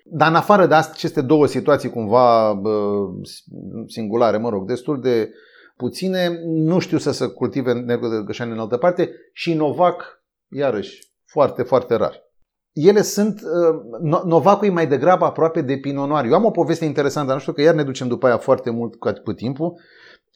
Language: Romanian